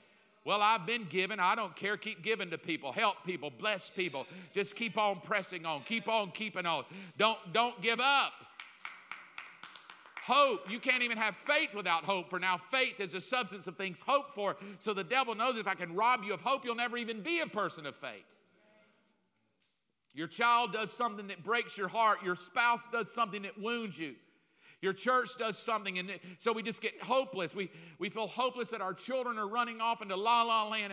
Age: 50-69